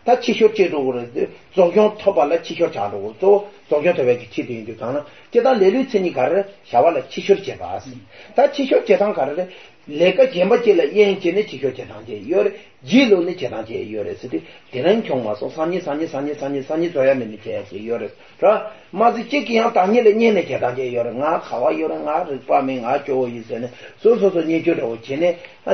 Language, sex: English, male